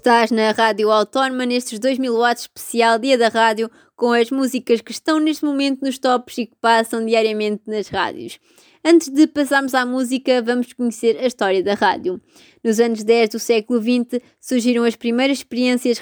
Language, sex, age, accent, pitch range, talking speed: Portuguese, female, 20-39, Brazilian, 220-260 Hz, 175 wpm